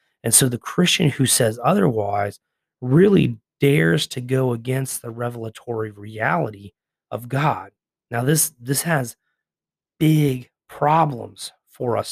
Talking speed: 125 wpm